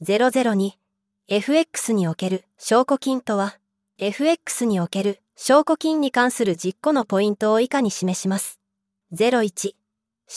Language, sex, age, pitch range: Japanese, female, 20-39, 195-245 Hz